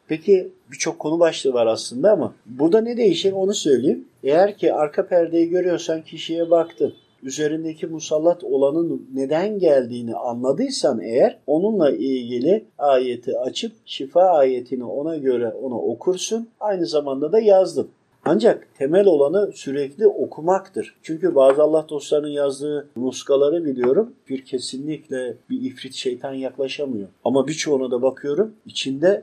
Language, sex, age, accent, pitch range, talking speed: Turkish, male, 50-69, native, 140-215 Hz, 130 wpm